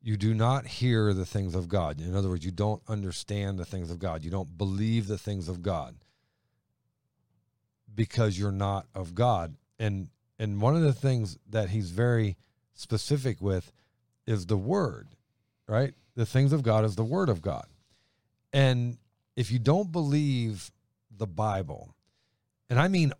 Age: 50-69